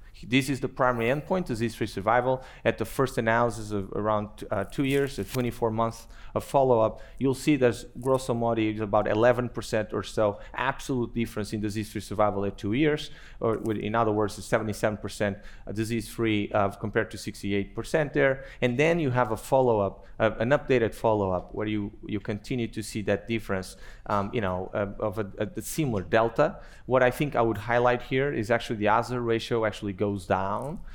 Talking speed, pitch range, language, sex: 175 wpm, 105-125 Hz, English, male